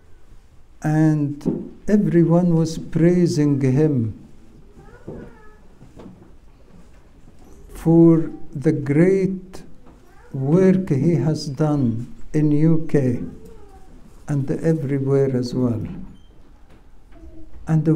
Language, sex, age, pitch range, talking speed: English, male, 60-79, 140-190 Hz, 65 wpm